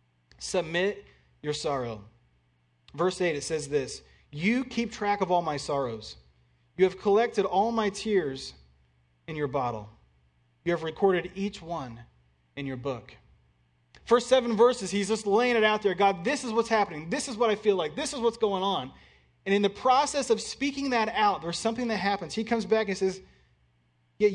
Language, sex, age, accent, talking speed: English, male, 30-49, American, 185 wpm